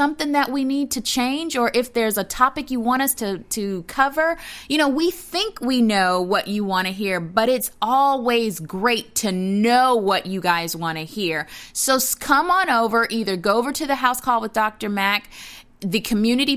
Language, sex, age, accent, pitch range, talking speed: English, female, 30-49, American, 195-255 Hz, 205 wpm